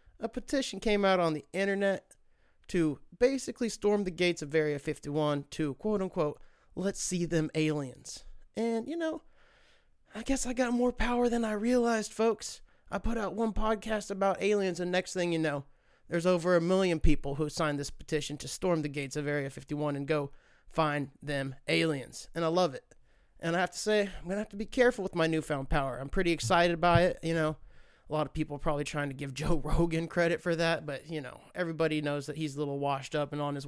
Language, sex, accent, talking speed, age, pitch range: English, male, American, 215 wpm, 30-49, 150-205 Hz